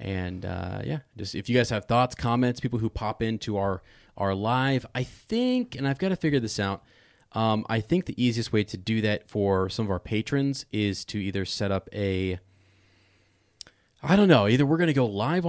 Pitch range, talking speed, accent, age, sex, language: 100-120 Hz, 215 wpm, American, 30-49, male, English